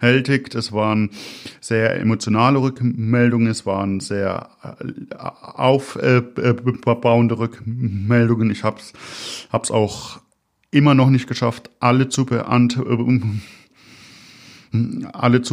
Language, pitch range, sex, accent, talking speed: German, 110-125 Hz, male, German, 85 wpm